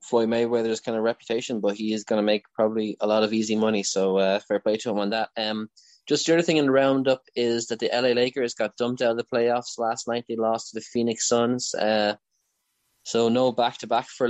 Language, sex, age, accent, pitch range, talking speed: English, male, 20-39, Irish, 105-120 Hz, 240 wpm